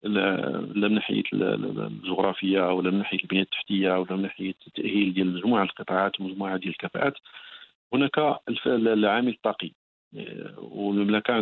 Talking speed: 120 wpm